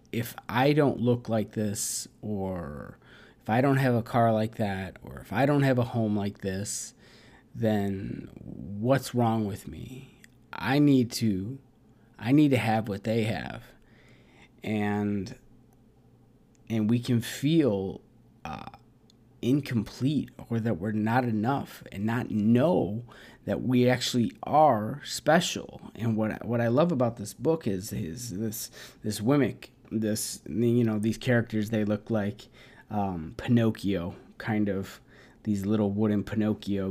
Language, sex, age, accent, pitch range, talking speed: English, male, 20-39, American, 105-125 Hz, 145 wpm